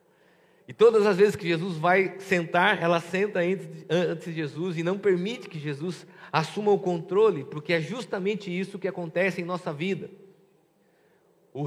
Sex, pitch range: male, 135-180 Hz